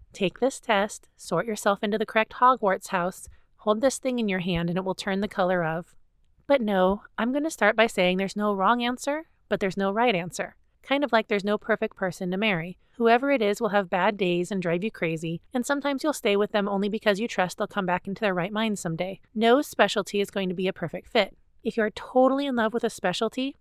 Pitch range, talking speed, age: 185-230 Hz, 245 wpm, 30-49